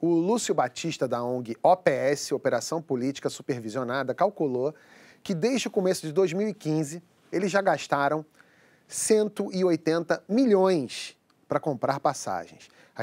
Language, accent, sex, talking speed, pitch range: Portuguese, Brazilian, male, 115 wpm, 135-175 Hz